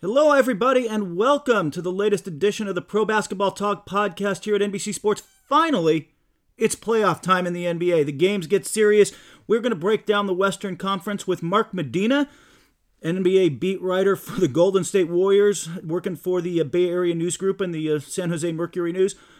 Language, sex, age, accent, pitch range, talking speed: English, male, 40-59, American, 160-205 Hz, 195 wpm